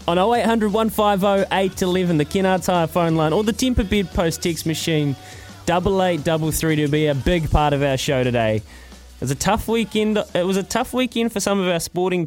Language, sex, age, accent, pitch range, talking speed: English, male, 20-39, Australian, 120-165 Hz, 215 wpm